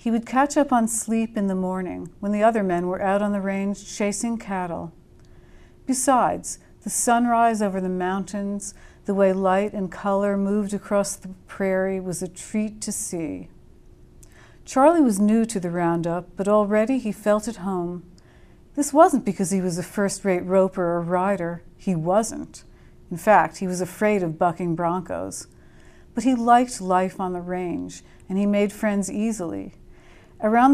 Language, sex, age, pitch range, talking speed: English, female, 60-79, 185-225 Hz, 165 wpm